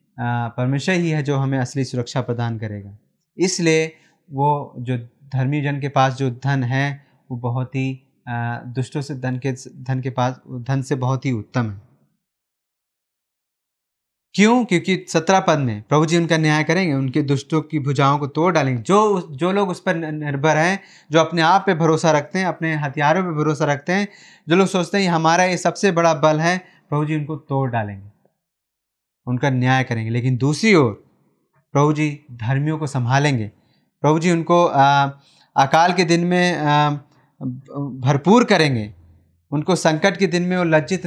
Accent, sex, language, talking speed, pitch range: native, male, Hindi, 170 wpm, 130-165 Hz